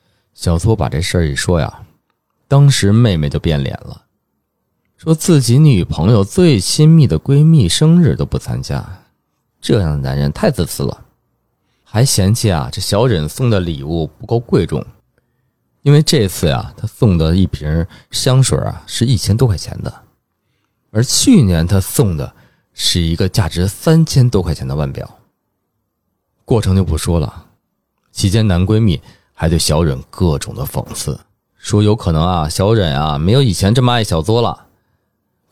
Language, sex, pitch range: Chinese, male, 85-130 Hz